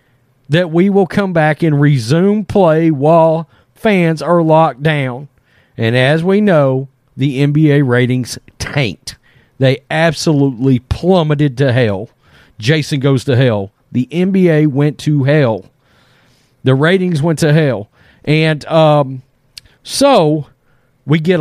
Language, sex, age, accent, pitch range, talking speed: English, male, 40-59, American, 130-170 Hz, 125 wpm